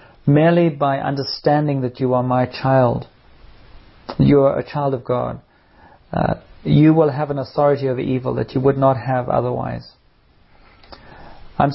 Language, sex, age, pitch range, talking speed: English, male, 40-59, 125-145 Hz, 150 wpm